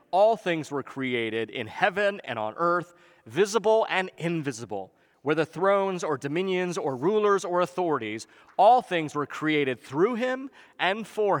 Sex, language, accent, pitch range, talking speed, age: male, English, American, 130-190 Hz, 145 wpm, 40-59